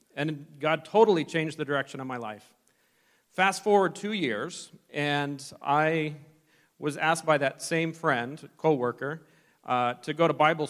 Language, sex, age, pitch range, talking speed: English, male, 40-59, 130-160 Hz, 145 wpm